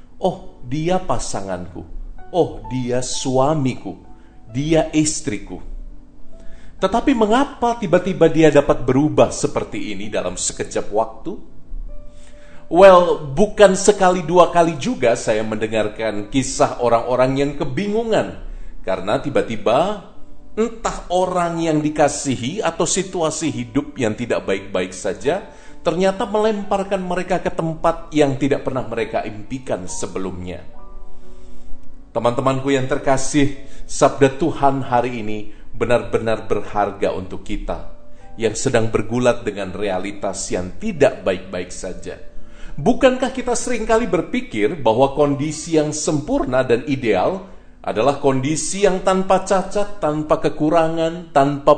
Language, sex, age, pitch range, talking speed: Indonesian, male, 40-59, 110-175 Hz, 110 wpm